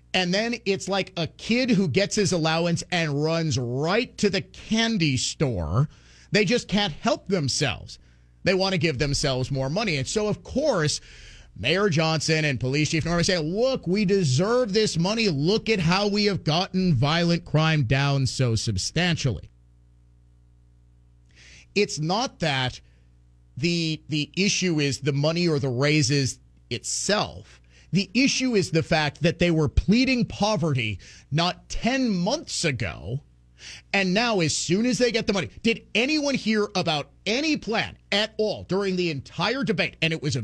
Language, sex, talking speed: English, male, 160 wpm